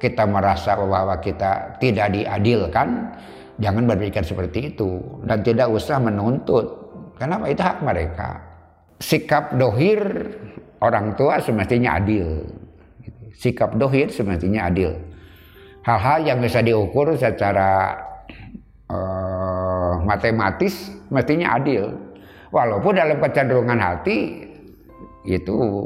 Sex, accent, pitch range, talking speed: male, native, 95-125 Hz, 95 wpm